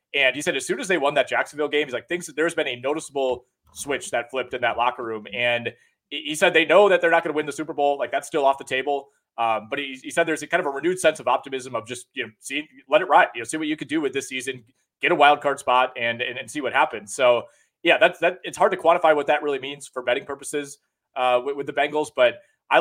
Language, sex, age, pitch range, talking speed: English, male, 30-49, 130-160 Hz, 290 wpm